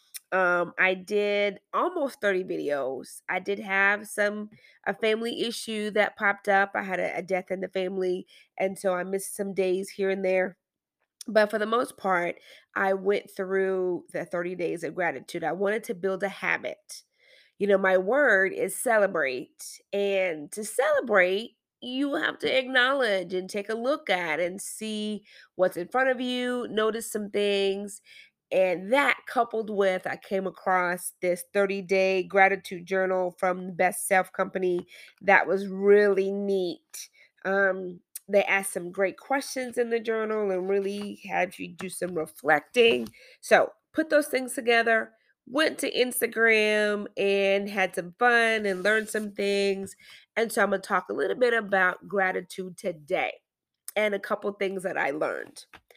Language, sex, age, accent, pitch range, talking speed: English, female, 20-39, American, 185-220 Hz, 160 wpm